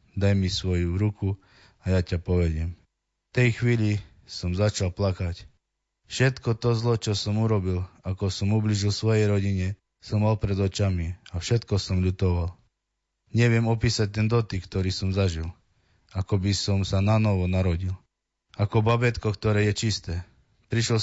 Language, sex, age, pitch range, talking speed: Slovak, male, 20-39, 95-110 Hz, 150 wpm